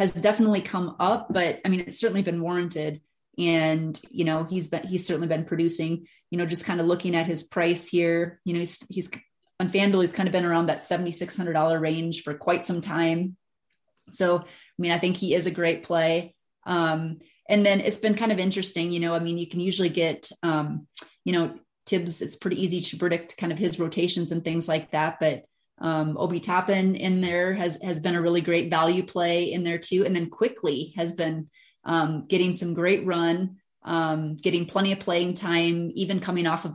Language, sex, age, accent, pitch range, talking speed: English, female, 30-49, American, 165-185 Hz, 210 wpm